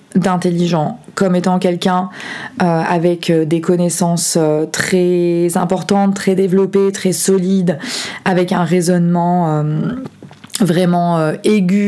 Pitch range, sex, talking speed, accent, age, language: 175-205 Hz, female, 105 wpm, French, 20-39, French